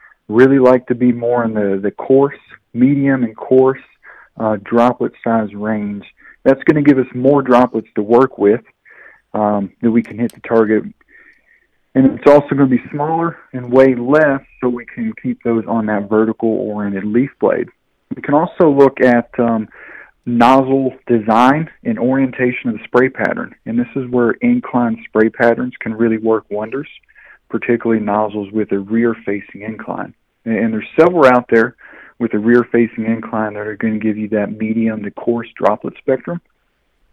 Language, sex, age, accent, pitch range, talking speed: English, male, 40-59, American, 110-130 Hz, 175 wpm